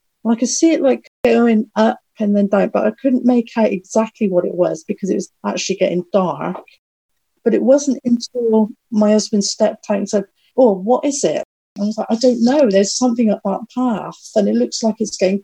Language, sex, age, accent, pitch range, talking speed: English, female, 40-59, British, 195-240 Hz, 220 wpm